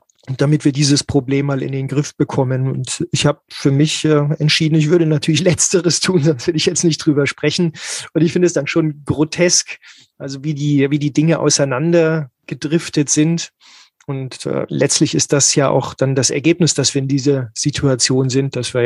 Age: 30-49